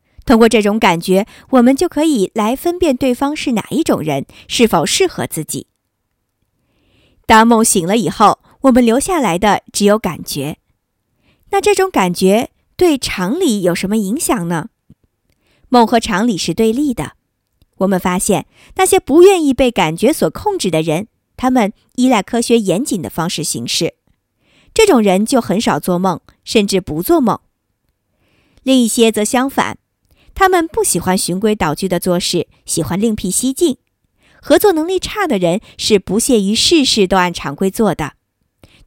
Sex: male